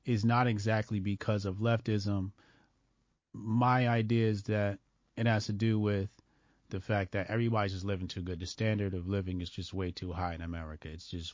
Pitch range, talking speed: 90-110 Hz, 190 wpm